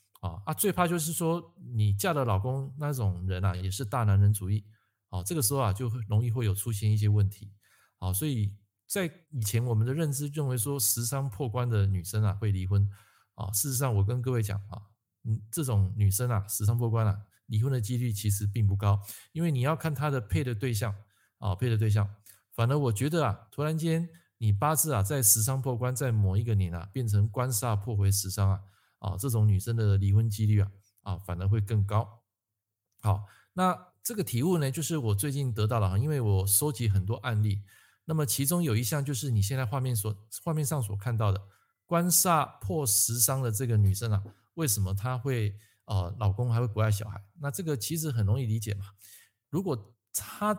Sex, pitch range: male, 100-135 Hz